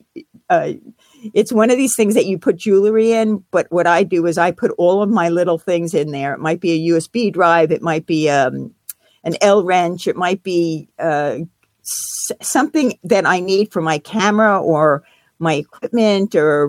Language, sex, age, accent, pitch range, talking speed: English, female, 50-69, American, 165-215 Hz, 190 wpm